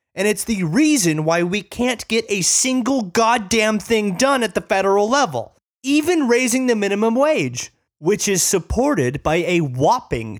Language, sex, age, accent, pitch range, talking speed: English, male, 30-49, American, 135-210 Hz, 160 wpm